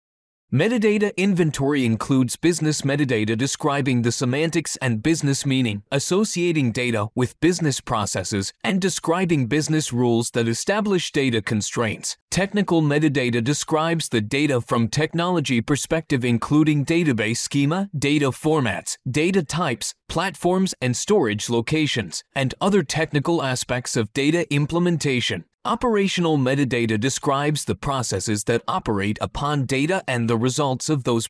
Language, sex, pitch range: English, male, 120-165 Hz